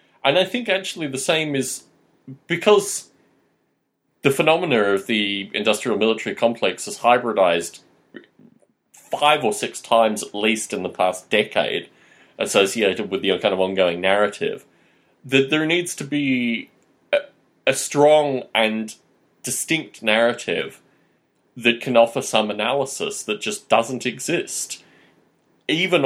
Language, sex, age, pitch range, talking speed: English, male, 30-49, 110-160 Hz, 125 wpm